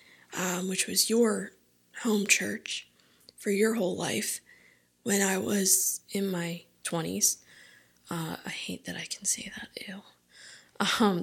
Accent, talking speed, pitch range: American, 140 wpm, 155-185 Hz